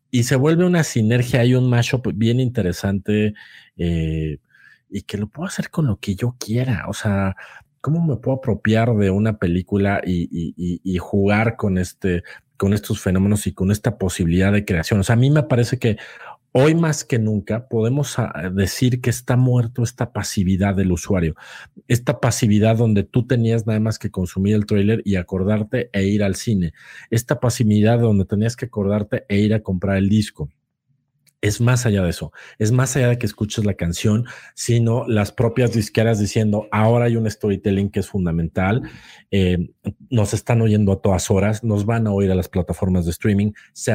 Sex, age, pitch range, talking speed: male, 50-69, 100-120 Hz, 185 wpm